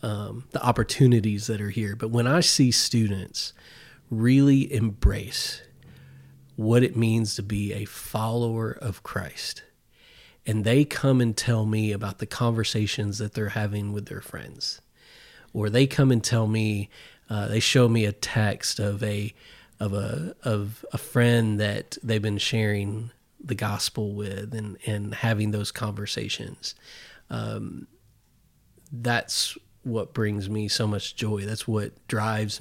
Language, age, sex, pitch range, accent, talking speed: English, 30-49, male, 105-115 Hz, American, 145 wpm